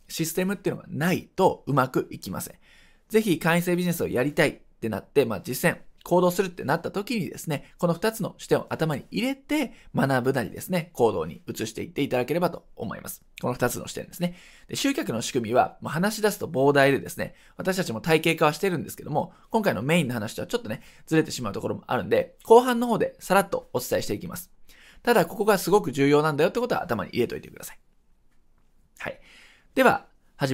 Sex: male